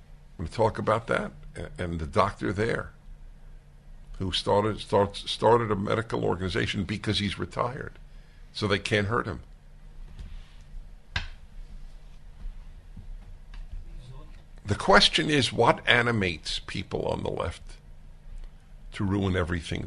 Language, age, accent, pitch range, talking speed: English, 60-79, American, 75-95 Hz, 110 wpm